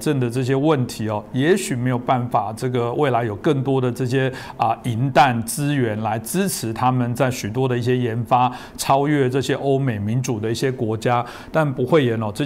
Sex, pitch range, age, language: male, 115-135 Hz, 50-69, Chinese